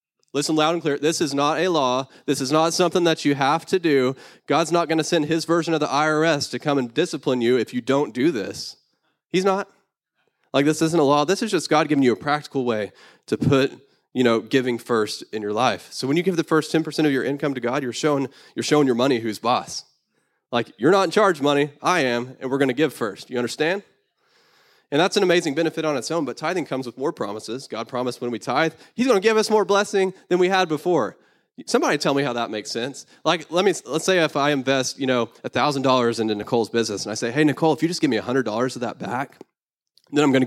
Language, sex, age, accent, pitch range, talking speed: English, male, 20-39, American, 120-160 Hz, 250 wpm